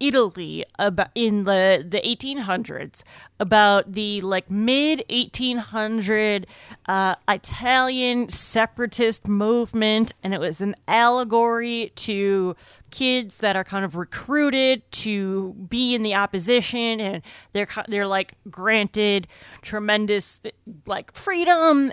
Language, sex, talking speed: English, female, 105 wpm